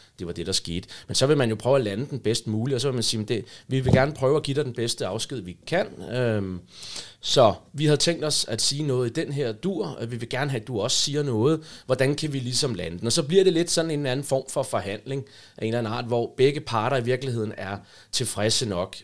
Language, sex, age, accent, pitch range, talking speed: Danish, male, 30-49, native, 110-145 Hz, 275 wpm